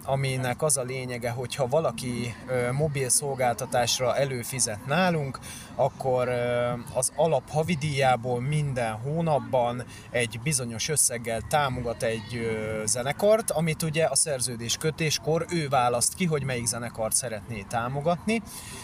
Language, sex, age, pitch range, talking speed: Hungarian, male, 30-49, 120-145 Hz, 115 wpm